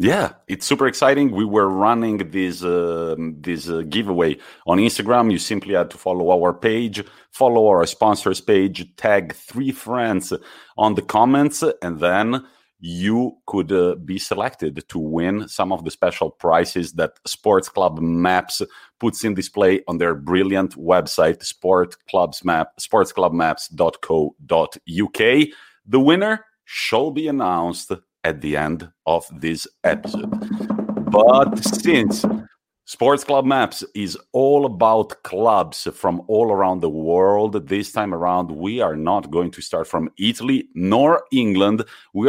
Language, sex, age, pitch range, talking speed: English, male, 40-59, 90-135 Hz, 135 wpm